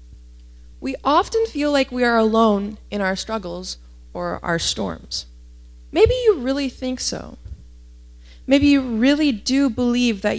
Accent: American